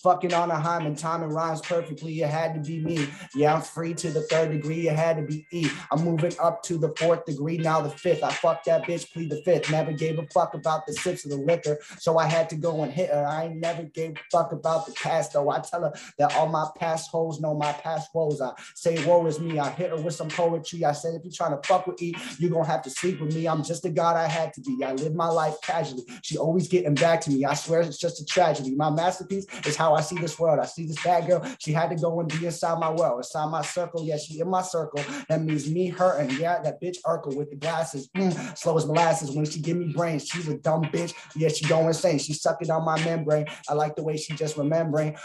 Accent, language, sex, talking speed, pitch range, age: American, English, male, 270 wpm, 150-170 Hz, 20-39